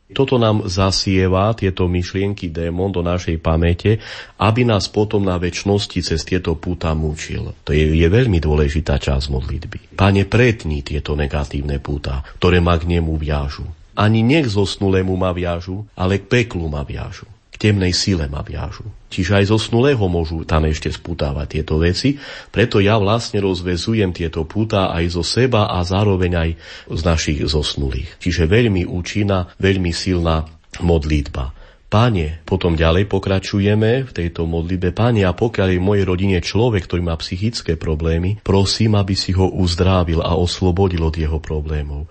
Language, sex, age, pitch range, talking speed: Slovak, male, 30-49, 80-100 Hz, 155 wpm